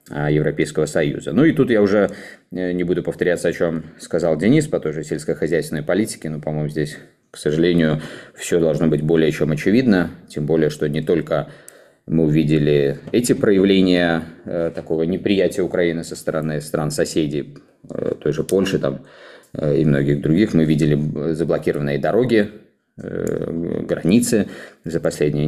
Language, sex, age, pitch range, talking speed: Russian, male, 20-39, 75-85 Hz, 135 wpm